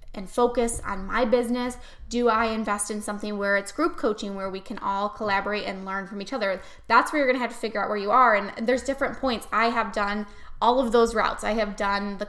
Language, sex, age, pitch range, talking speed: English, female, 10-29, 205-245 Hz, 245 wpm